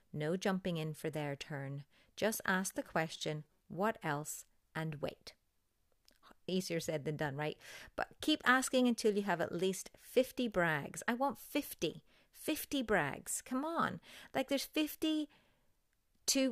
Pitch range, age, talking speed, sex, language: 170-235 Hz, 30-49, 140 wpm, female, English